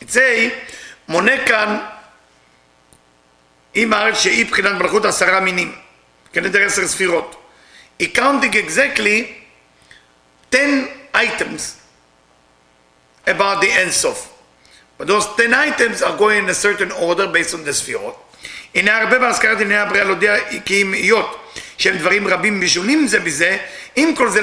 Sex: male